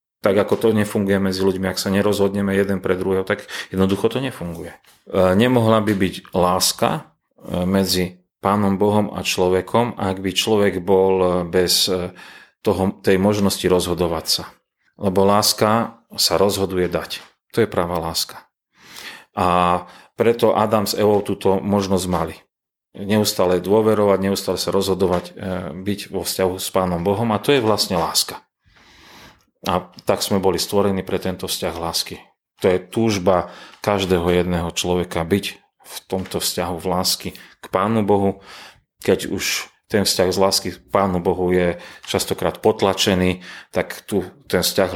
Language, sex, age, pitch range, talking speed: Slovak, male, 40-59, 90-100 Hz, 145 wpm